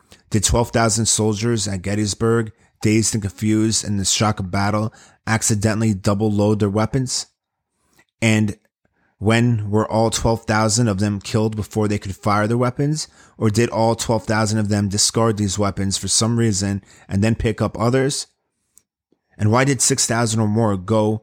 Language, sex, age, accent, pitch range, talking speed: English, male, 30-49, American, 100-115 Hz, 160 wpm